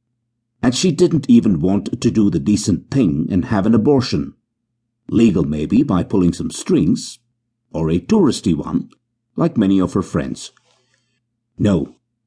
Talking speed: 145 wpm